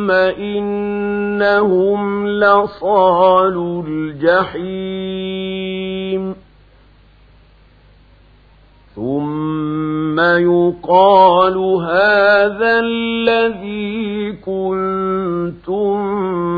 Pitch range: 175-205 Hz